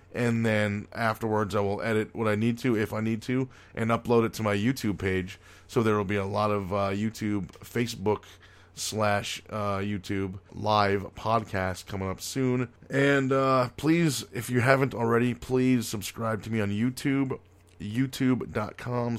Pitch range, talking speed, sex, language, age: 100-120 Hz, 165 wpm, male, English, 20-39